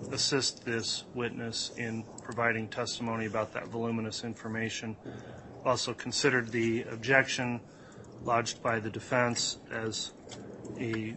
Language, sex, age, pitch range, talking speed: English, male, 30-49, 110-120 Hz, 105 wpm